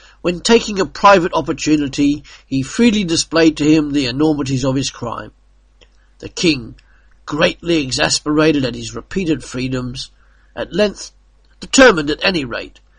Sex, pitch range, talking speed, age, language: male, 125-165 Hz, 135 wpm, 50-69, English